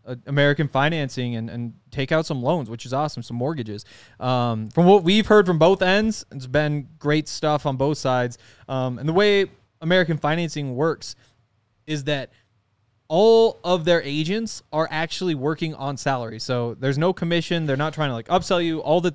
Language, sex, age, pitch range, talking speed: English, male, 20-39, 125-150 Hz, 185 wpm